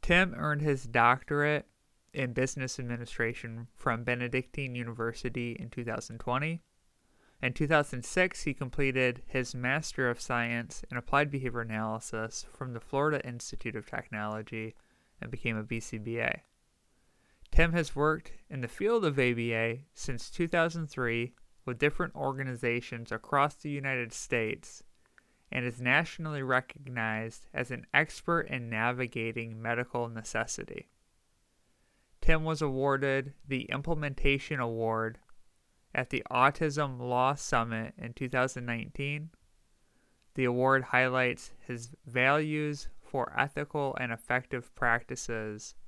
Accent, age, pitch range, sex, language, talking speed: American, 20-39, 115-145 Hz, male, English, 110 wpm